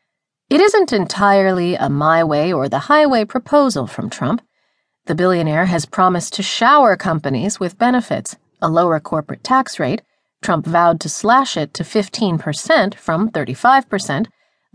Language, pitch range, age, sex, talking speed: English, 170-250 Hz, 40-59, female, 125 wpm